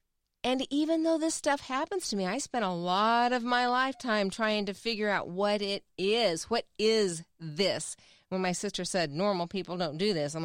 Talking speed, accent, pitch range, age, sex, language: 200 wpm, American, 180-260 Hz, 40-59, female, English